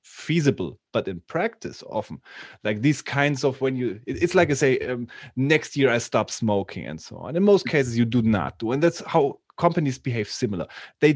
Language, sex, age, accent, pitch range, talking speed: English, male, 30-49, German, 120-175 Hz, 205 wpm